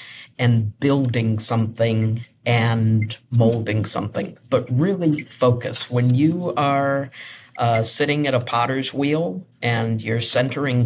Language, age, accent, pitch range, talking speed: English, 50-69, American, 120-145 Hz, 115 wpm